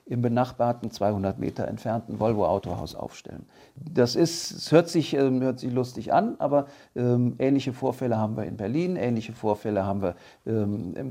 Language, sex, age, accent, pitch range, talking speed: German, male, 50-69, German, 110-135 Hz, 150 wpm